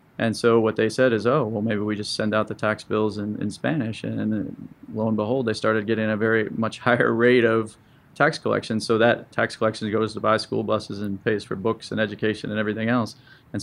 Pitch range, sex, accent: 105-115 Hz, male, American